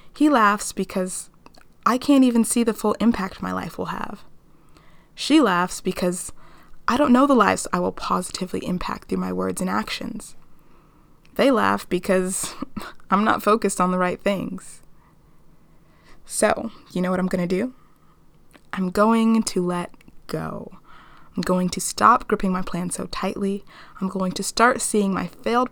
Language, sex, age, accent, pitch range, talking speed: English, female, 20-39, American, 180-225 Hz, 160 wpm